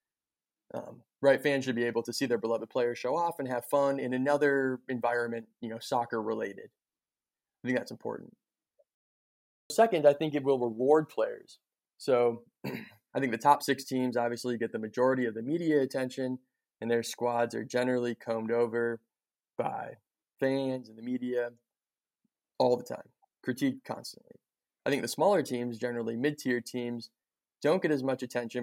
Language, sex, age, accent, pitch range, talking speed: English, male, 20-39, American, 120-135 Hz, 165 wpm